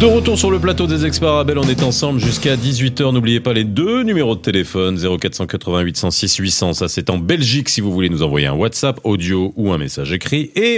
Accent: French